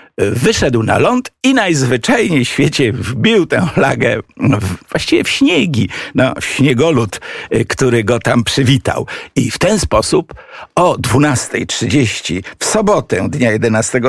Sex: male